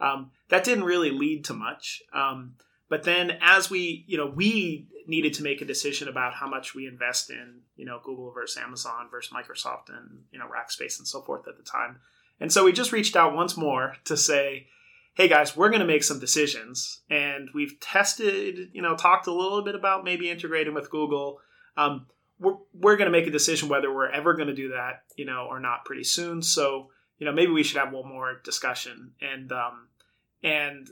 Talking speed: 210 wpm